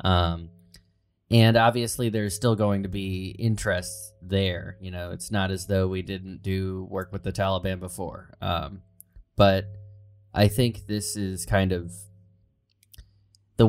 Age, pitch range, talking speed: 20-39, 95-105 Hz, 145 wpm